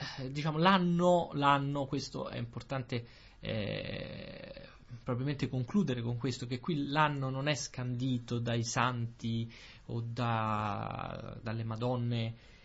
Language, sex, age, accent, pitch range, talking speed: Italian, male, 20-39, native, 120-160 Hz, 110 wpm